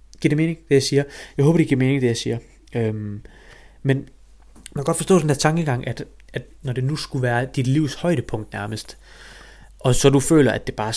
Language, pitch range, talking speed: Danish, 115-140 Hz, 225 wpm